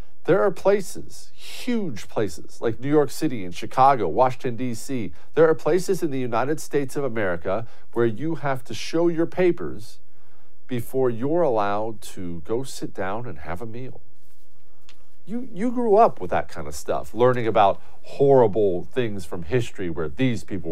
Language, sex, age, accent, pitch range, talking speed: English, male, 50-69, American, 105-160 Hz, 170 wpm